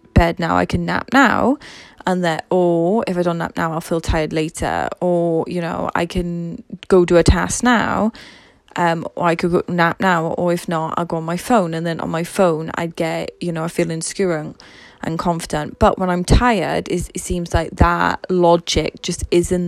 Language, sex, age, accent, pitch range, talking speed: English, female, 10-29, British, 165-185 Hz, 210 wpm